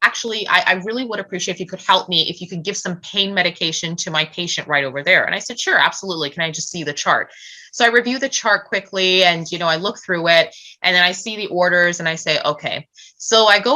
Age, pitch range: 20-39, 160-200 Hz